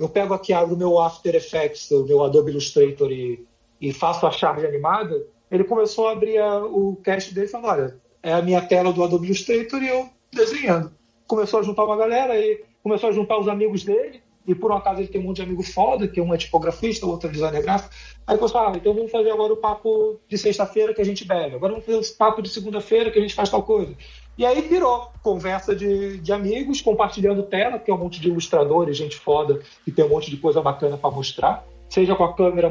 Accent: Brazilian